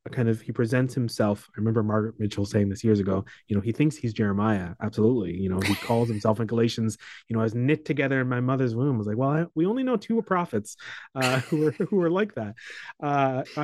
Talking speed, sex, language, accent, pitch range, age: 240 wpm, male, English, American, 110-145 Hz, 30-49